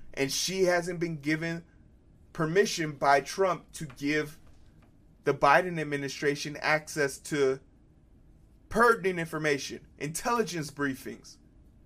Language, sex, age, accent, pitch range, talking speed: English, male, 30-49, American, 140-185 Hz, 95 wpm